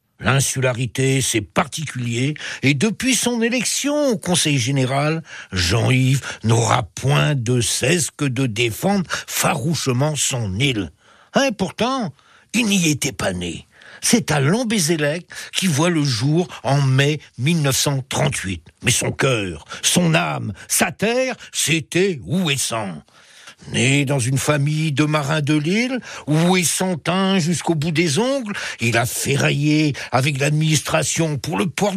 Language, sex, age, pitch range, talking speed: French, male, 60-79, 130-175 Hz, 130 wpm